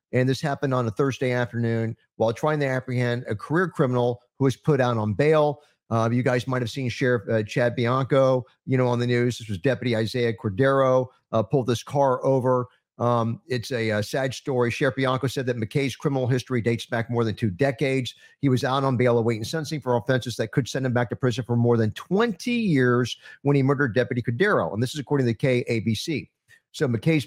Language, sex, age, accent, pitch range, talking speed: English, male, 50-69, American, 120-145 Hz, 215 wpm